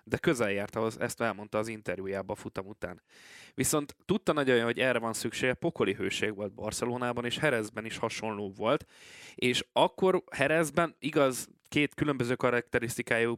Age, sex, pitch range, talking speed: 20-39, male, 110-135 Hz, 145 wpm